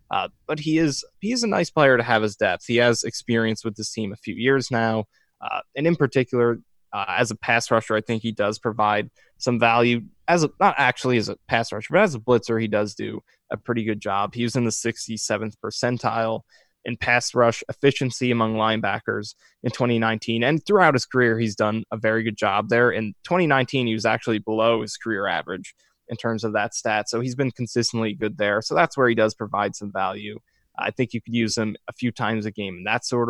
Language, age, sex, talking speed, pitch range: English, 20-39, male, 225 wpm, 110-125 Hz